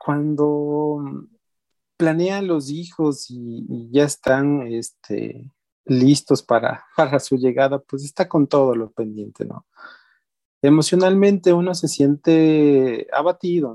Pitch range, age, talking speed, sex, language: 120-155 Hz, 40-59, 115 wpm, male, Spanish